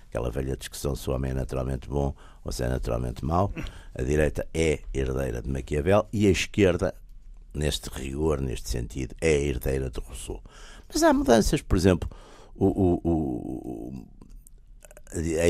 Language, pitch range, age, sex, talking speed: Portuguese, 70-95 Hz, 60-79, male, 160 wpm